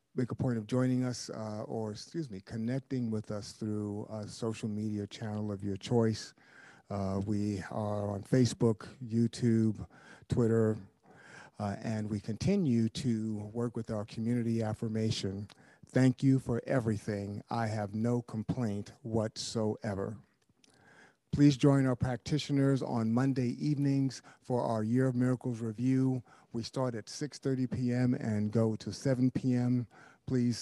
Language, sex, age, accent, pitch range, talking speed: English, male, 50-69, American, 110-130 Hz, 140 wpm